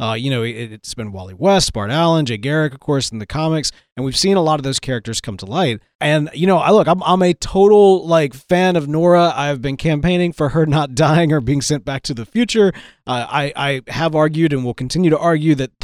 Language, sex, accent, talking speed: English, male, American, 245 wpm